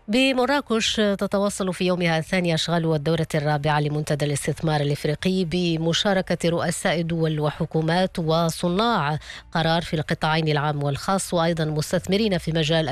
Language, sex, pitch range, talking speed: English, female, 155-185 Hz, 115 wpm